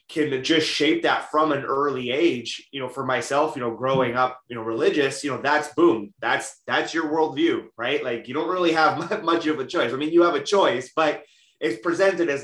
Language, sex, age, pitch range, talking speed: English, male, 20-39, 125-170 Hz, 225 wpm